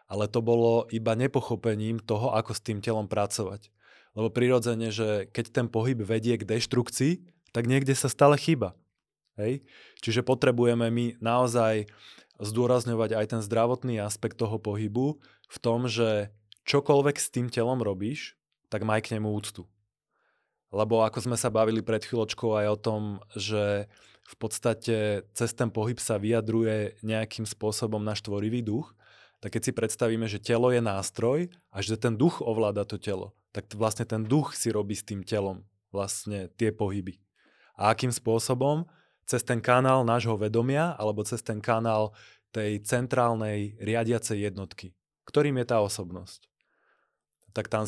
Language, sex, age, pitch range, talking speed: Czech, male, 20-39, 105-120 Hz, 150 wpm